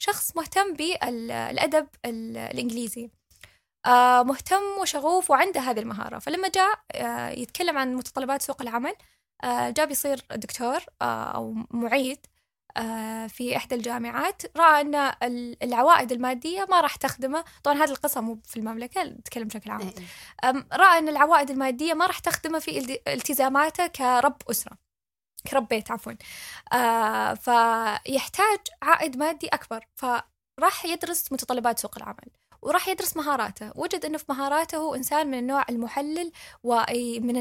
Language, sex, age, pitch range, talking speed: Arabic, female, 10-29, 240-320 Hz, 125 wpm